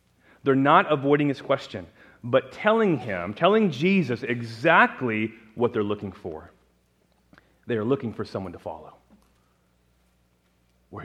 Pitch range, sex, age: 90-135 Hz, male, 30-49